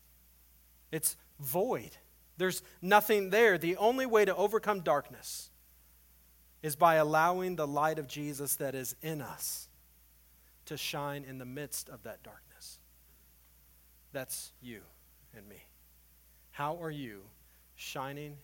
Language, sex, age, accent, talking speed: English, male, 40-59, American, 125 wpm